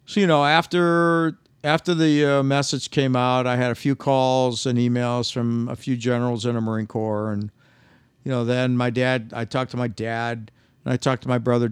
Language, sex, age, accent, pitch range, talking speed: English, male, 50-69, American, 115-135 Hz, 215 wpm